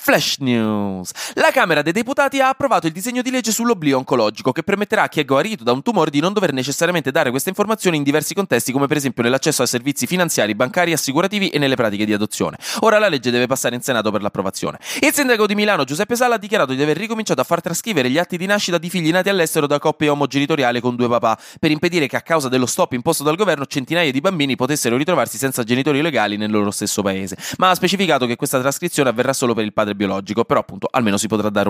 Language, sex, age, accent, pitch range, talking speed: Italian, male, 20-39, native, 115-180 Hz, 235 wpm